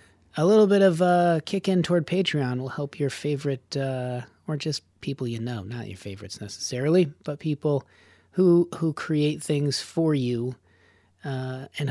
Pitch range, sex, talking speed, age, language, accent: 130-160 Hz, male, 165 wpm, 30-49, English, American